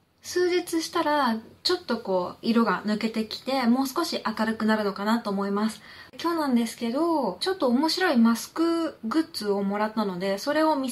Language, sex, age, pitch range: Japanese, female, 20-39, 200-290 Hz